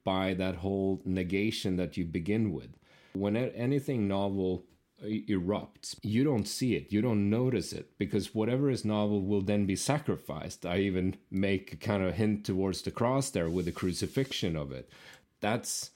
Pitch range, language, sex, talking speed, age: 95-110 Hz, English, male, 170 wpm, 30-49